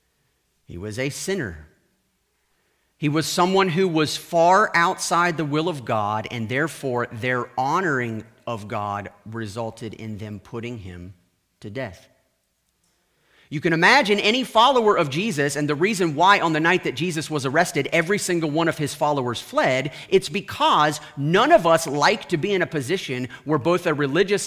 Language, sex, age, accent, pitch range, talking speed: English, male, 40-59, American, 130-205 Hz, 165 wpm